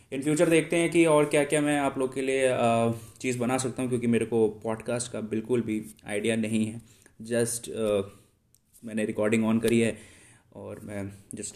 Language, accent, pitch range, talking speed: Hindi, native, 110-130 Hz, 190 wpm